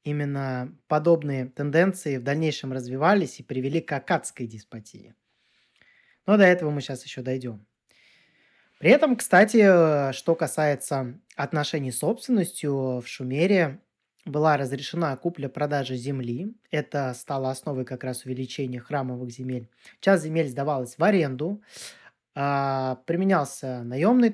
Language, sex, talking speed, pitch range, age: Russian, male, 115 wpm, 130-165 Hz, 20-39